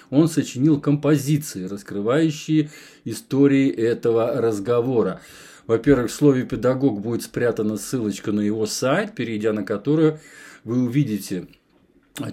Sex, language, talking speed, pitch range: male, Russian, 110 wpm, 110-150 Hz